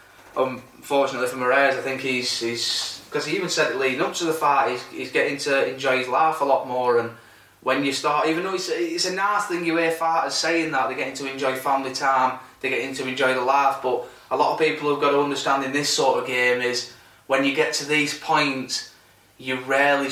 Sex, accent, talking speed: male, British, 230 wpm